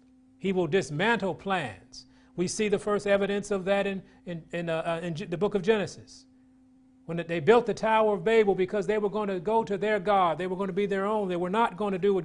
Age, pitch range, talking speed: 40-59, 170-225 Hz, 250 wpm